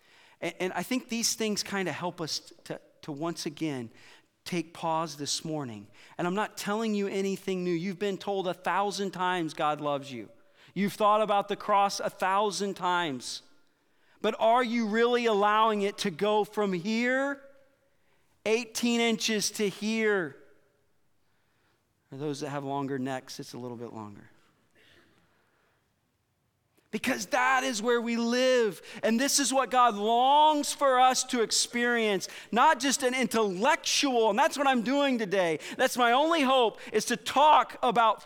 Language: English